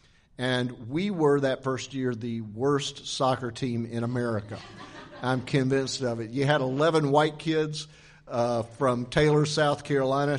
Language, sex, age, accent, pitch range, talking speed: English, male, 50-69, American, 120-145 Hz, 150 wpm